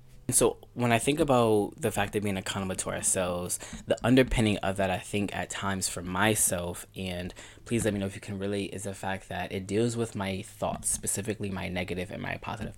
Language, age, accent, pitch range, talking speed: English, 20-39, American, 95-105 Hz, 215 wpm